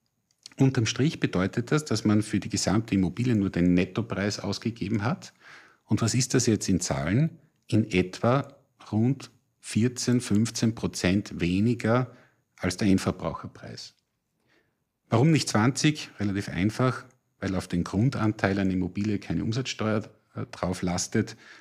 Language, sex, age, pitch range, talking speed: German, male, 50-69, 95-130 Hz, 130 wpm